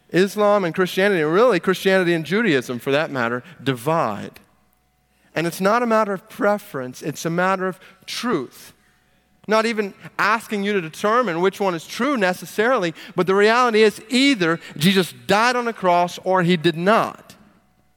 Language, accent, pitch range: English, American, 165-220 Hz